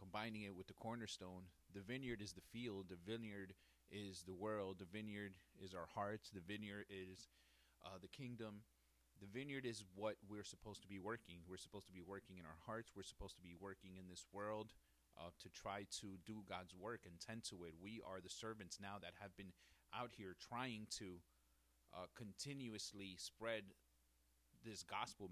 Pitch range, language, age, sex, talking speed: 85-105 Hz, English, 30-49, male, 185 wpm